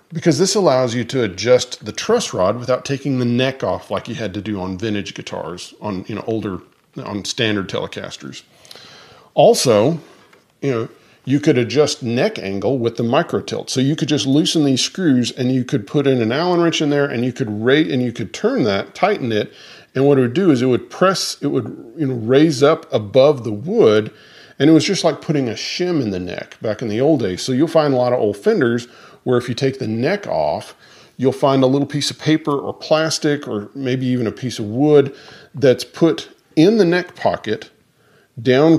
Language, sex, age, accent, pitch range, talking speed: English, male, 40-59, American, 115-150 Hz, 220 wpm